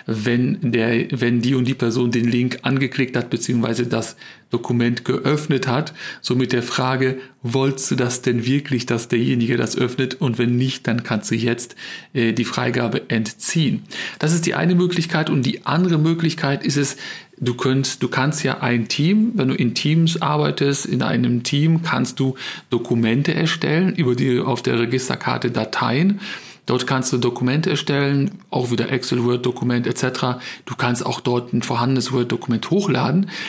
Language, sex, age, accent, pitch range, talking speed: German, male, 40-59, German, 125-160 Hz, 170 wpm